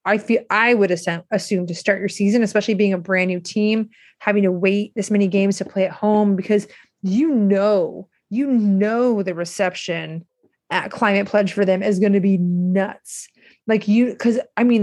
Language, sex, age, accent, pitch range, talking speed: English, female, 30-49, American, 185-225 Hz, 190 wpm